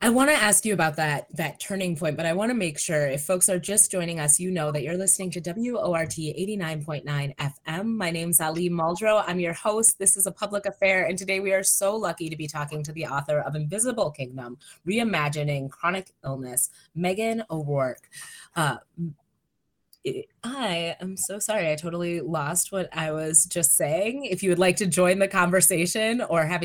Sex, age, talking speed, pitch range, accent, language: female, 20-39, 190 wpm, 150-195 Hz, American, English